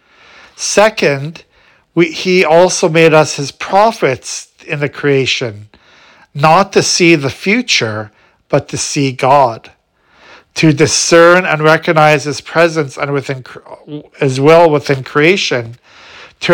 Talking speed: 120 wpm